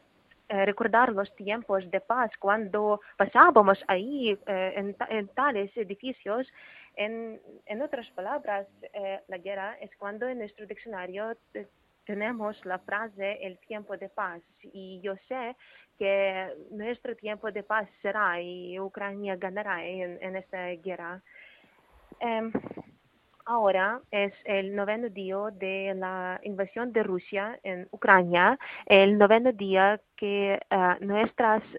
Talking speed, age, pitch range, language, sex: 125 wpm, 20-39, 195-220 Hz, Spanish, female